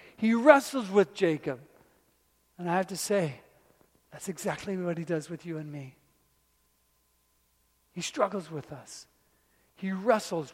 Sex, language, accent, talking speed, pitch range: male, English, American, 135 wpm, 125-210 Hz